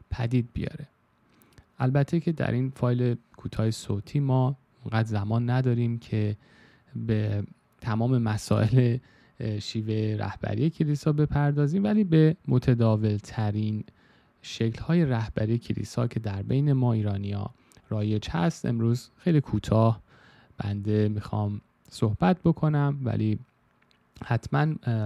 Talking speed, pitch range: 105 wpm, 105-130 Hz